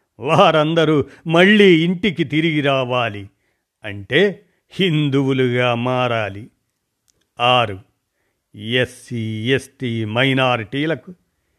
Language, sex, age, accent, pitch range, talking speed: Telugu, male, 50-69, native, 115-160 Hz, 60 wpm